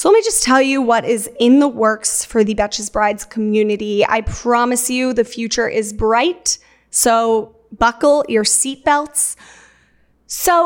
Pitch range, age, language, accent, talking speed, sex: 220-275 Hz, 20-39, English, American, 160 wpm, female